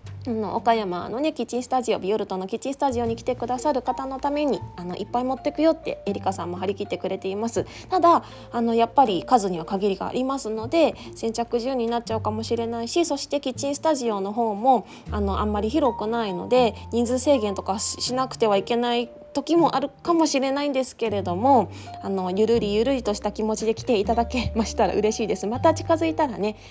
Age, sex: 20-39, female